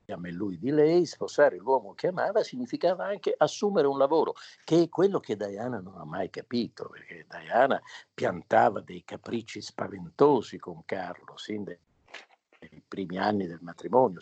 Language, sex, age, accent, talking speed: Italian, male, 50-69, native, 160 wpm